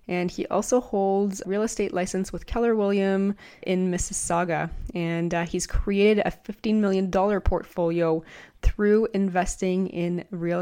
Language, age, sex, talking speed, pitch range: English, 20-39, female, 140 wpm, 175-200 Hz